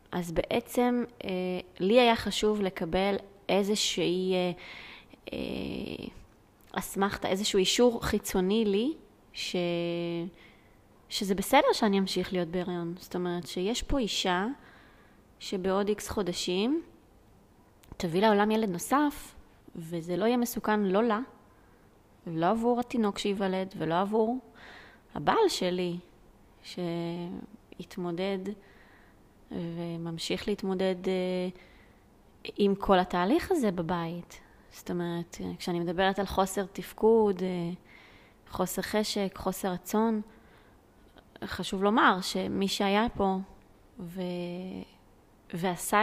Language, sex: Hebrew, female